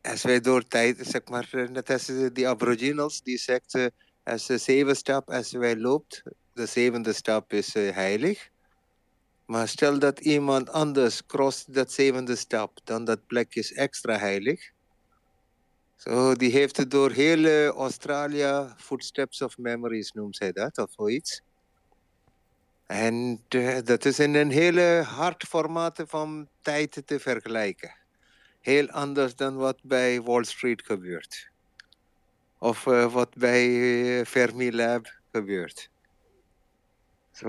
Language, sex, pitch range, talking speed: English, male, 120-150 Hz, 135 wpm